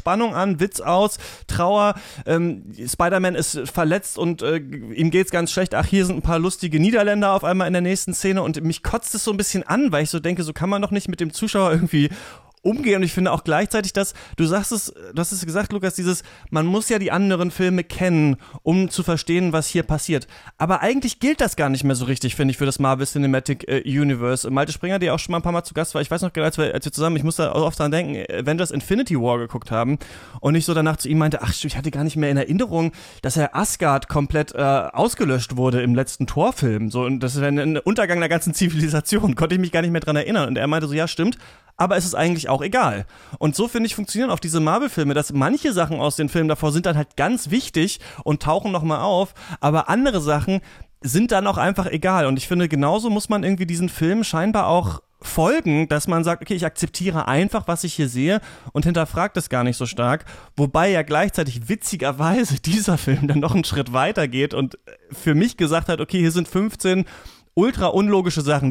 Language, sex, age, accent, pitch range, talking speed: German, male, 30-49, German, 145-185 Hz, 235 wpm